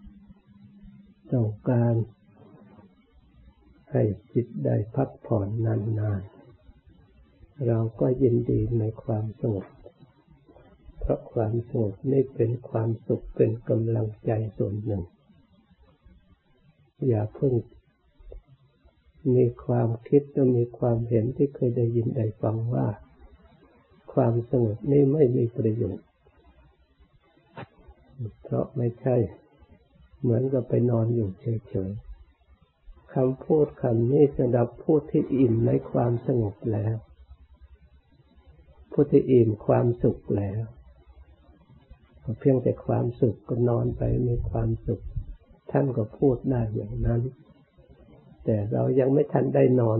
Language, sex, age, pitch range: Thai, male, 60-79, 100-125 Hz